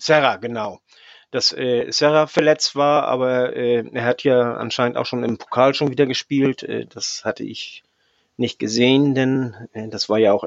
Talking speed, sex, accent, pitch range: 185 wpm, male, German, 115-145 Hz